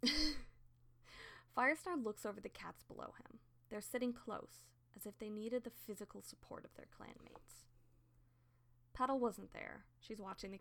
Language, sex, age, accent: English, female, 20-39, American